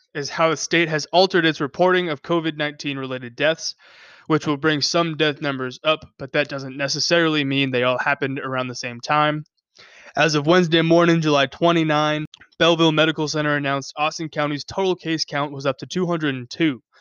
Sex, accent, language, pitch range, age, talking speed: male, American, English, 140-165 Hz, 20-39, 175 wpm